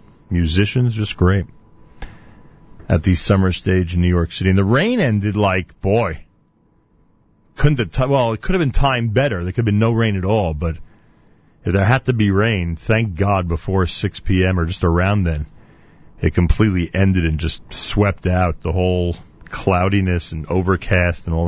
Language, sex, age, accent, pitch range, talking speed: English, male, 40-59, American, 95-140 Hz, 180 wpm